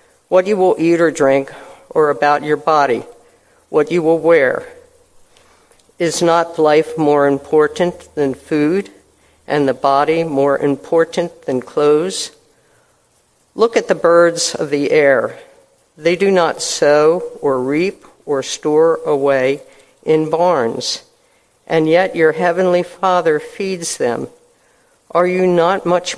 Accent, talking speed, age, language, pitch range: American, 130 wpm, 50-69, English, 155-200 Hz